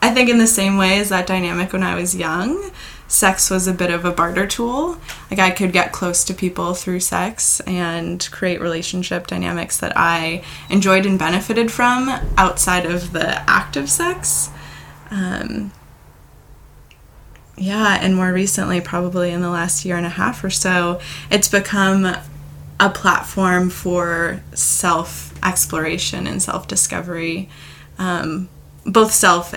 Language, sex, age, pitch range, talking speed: English, female, 20-39, 135-190 Hz, 145 wpm